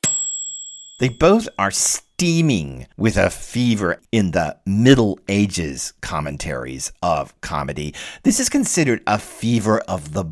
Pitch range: 95-125 Hz